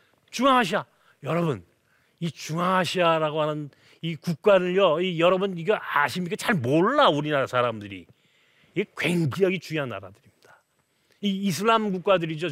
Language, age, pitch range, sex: Korean, 30-49, 175-225 Hz, male